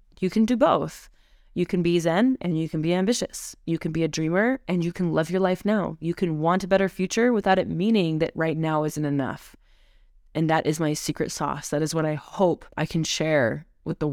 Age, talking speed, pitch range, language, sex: 20-39, 235 wpm, 150-175 Hz, English, female